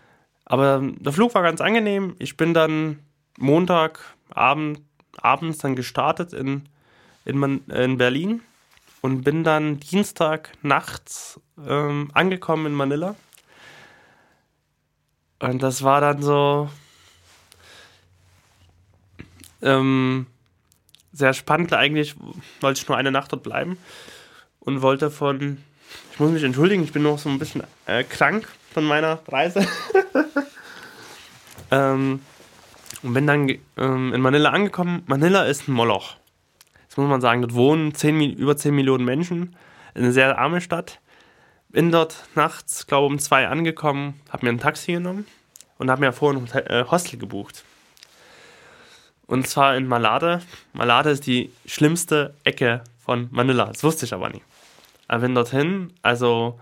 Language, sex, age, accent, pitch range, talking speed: German, male, 20-39, German, 130-160 Hz, 135 wpm